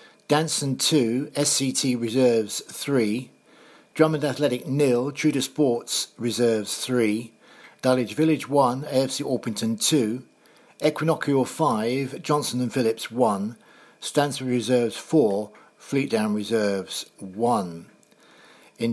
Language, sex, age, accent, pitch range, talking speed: English, male, 50-69, British, 120-145 Hz, 100 wpm